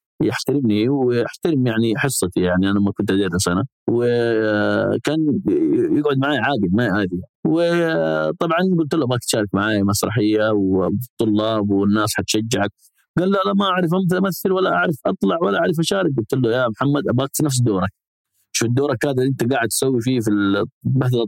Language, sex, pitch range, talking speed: Arabic, male, 105-140 Hz, 160 wpm